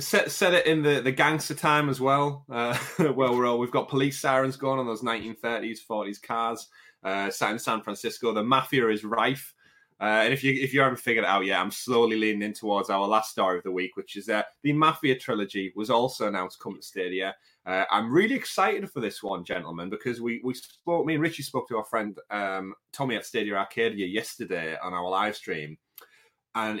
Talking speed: 220 wpm